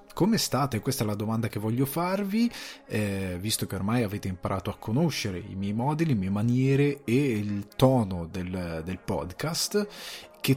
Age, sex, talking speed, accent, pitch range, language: 30-49, male, 170 wpm, native, 100-135 Hz, Italian